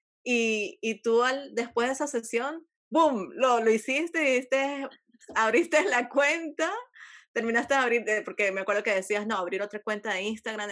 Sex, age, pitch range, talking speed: female, 20-39, 215-295 Hz, 170 wpm